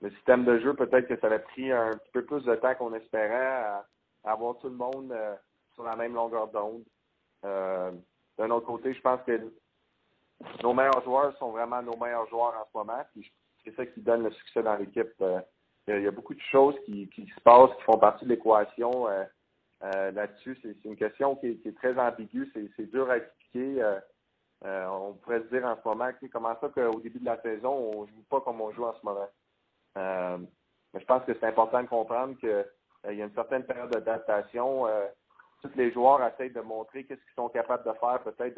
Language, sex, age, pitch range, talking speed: French, male, 30-49, 105-125 Hz, 230 wpm